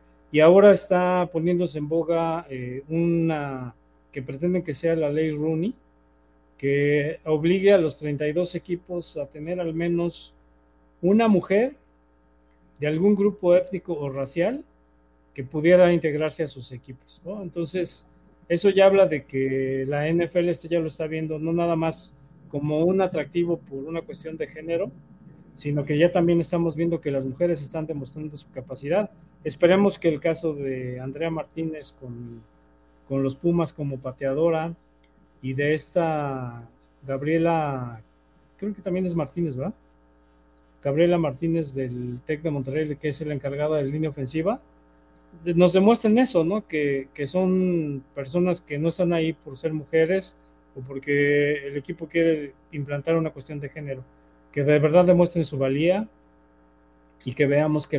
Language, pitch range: Spanish, 135-170 Hz